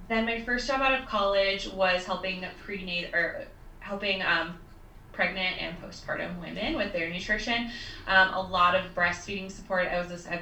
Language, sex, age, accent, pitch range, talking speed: English, female, 20-39, American, 175-200 Hz, 175 wpm